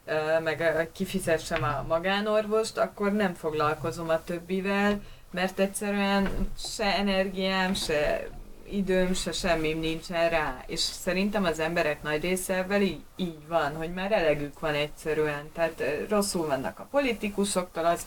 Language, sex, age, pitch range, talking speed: Hungarian, female, 30-49, 150-190 Hz, 135 wpm